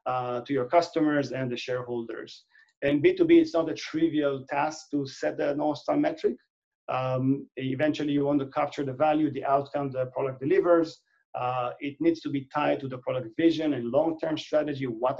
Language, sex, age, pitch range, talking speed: English, male, 40-59, 130-155 Hz, 185 wpm